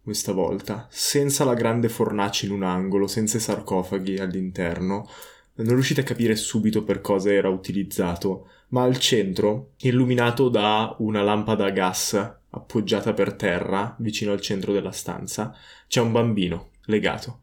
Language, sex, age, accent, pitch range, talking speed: Italian, male, 20-39, native, 95-120 Hz, 150 wpm